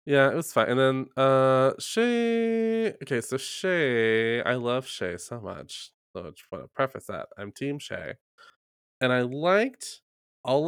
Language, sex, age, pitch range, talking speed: English, male, 20-39, 110-165 Hz, 170 wpm